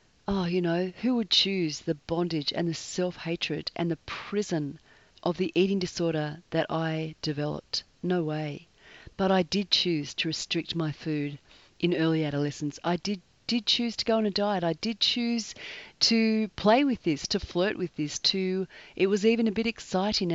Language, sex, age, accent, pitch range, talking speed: English, female, 40-59, Australian, 160-195 Hz, 180 wpm